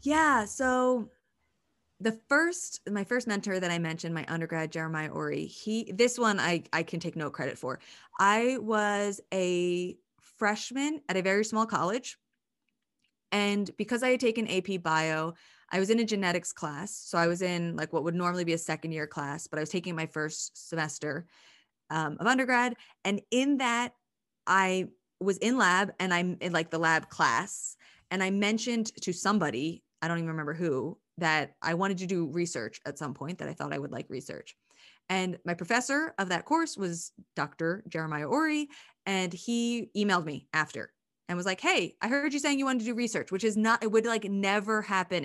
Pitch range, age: 165-225 Hz, 20-39